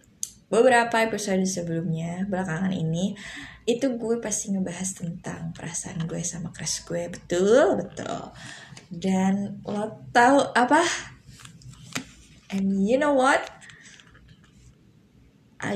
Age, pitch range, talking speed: 20-39, 165-215 Hz, 100 wpm